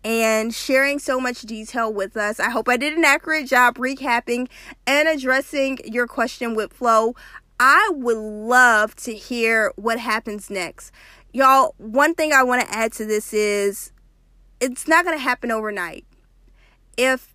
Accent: American